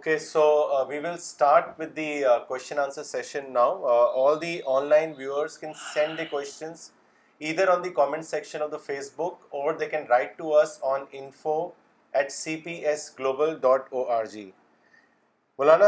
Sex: male